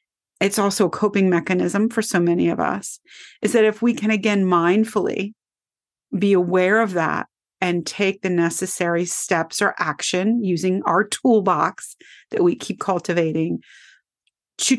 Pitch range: 185-225 Hz